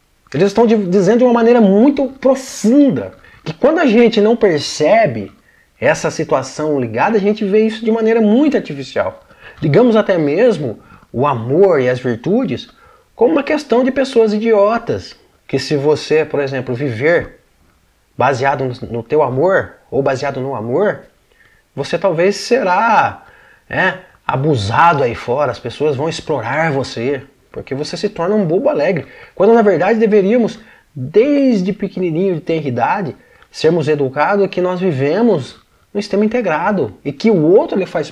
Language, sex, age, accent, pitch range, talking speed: Portuguese, male, 20-39, Brazilian, 135-225 Hz, 150 wpm